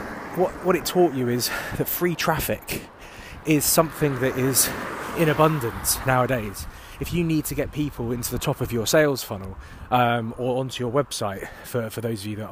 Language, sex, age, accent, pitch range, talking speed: English, male, 20-39, British, 110-145 Hz, 190 wpm